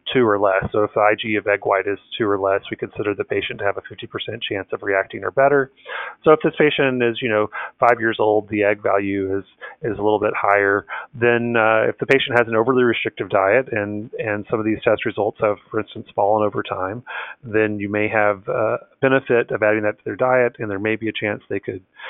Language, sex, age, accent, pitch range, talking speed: English, male, 30-49, American, 105-120 Hz, 245 wpm